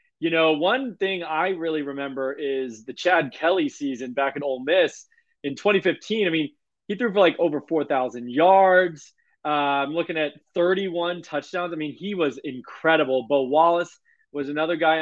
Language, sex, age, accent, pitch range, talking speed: English, male, 20-39, American, 135-175 Hz, 170 wpm